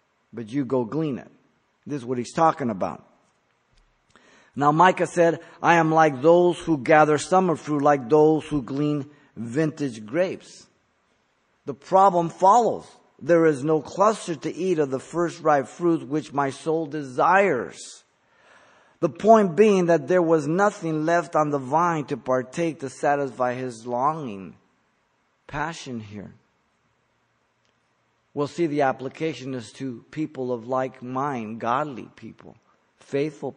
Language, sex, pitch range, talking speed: English, male, 130-165 Hz, 140 wpm